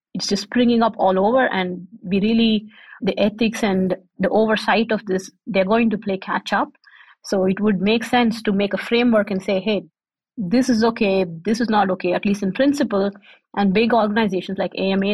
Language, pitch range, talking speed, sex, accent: English, 190-230 Hz, 200 wpm, female, Indian